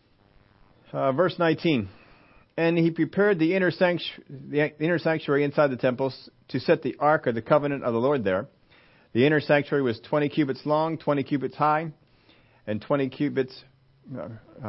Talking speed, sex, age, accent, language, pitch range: 165 wpm, male, 40-59, American, English, 105-145 Hz